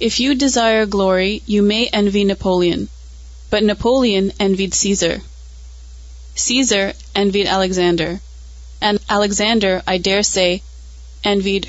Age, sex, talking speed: 30-49, female, 110 wpm